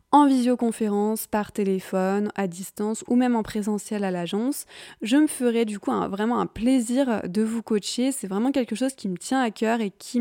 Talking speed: 205 wpm